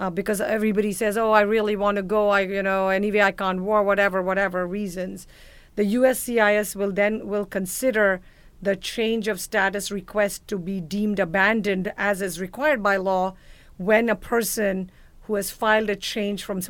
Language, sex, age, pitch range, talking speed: English, female, 50-69, 195-220 Hz, 175 wpm